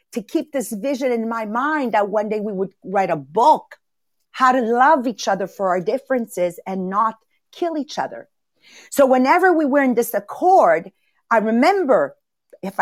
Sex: female